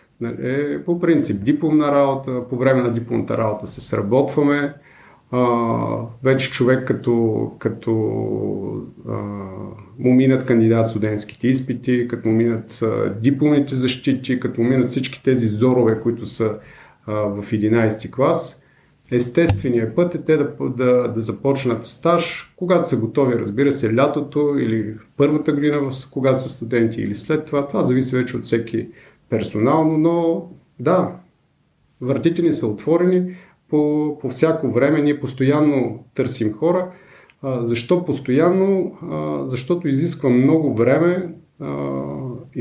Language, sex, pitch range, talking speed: Bulgarian, male, 115-145 Hz, 125 wpm